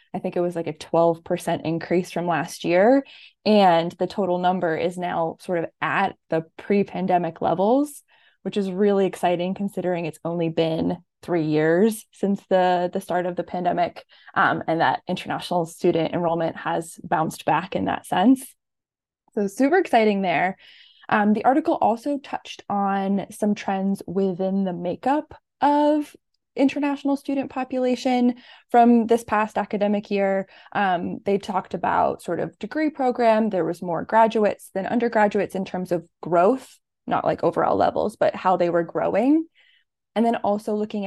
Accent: American